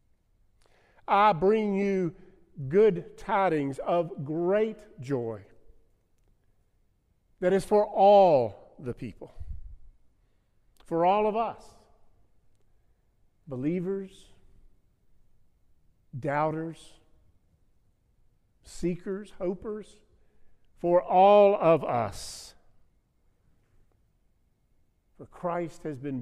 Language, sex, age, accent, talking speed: English, male, 50-69, American, 70 wpm